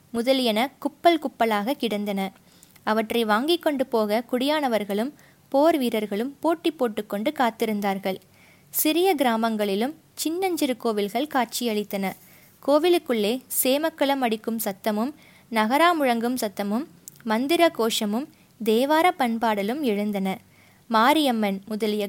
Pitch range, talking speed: 215-275 Hz, 85 wpm